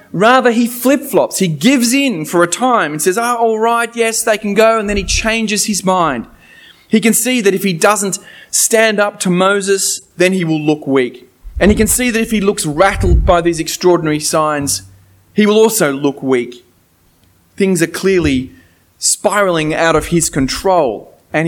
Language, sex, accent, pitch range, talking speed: English, male, Australian, 145-205 Hz, 185 wpm